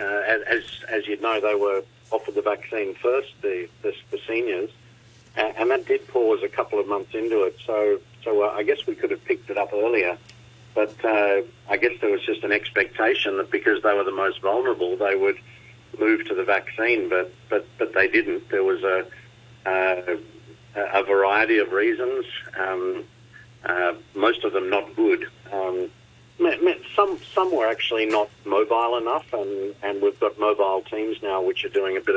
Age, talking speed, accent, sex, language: 50-69, 185 wpm, Australian, male, English